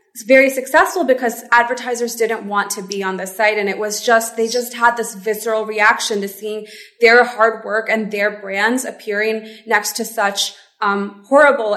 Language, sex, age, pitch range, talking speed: English, female, 20-39, 205-245 Hz, 185 wpm